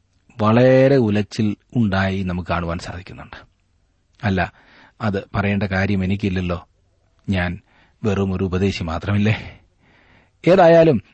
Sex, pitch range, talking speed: male, 95-130 Hz, 90 wpm